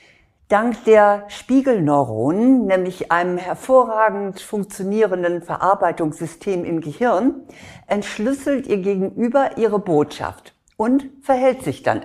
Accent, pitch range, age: German, 175-235 Hz, 60-79